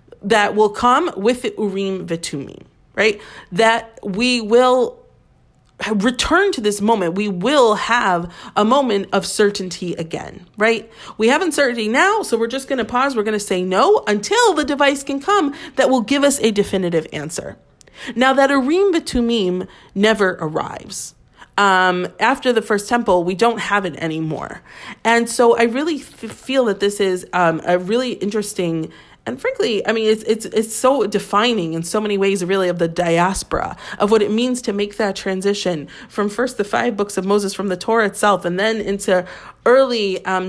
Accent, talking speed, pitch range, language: American, 180 wpm, 185-235 Hz, English